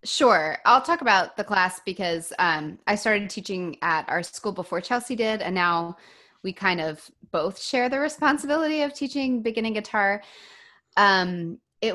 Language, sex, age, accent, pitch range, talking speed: English, female, 20-39, American, 170-225 Hz, 160 wpm